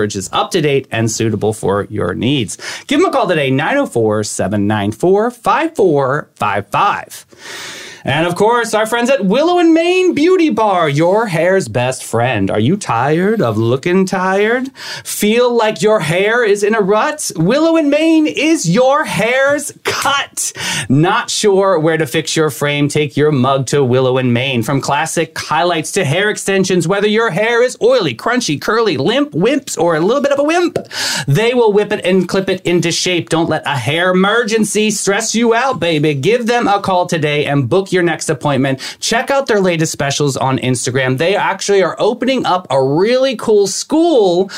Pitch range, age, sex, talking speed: 140-220 Hz, 30-49, male, 175 wpm